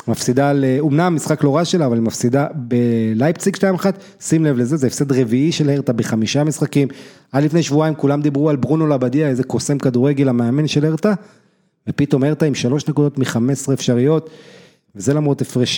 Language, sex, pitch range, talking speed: Hebrew, male, 120-155 Hz, 180 wpm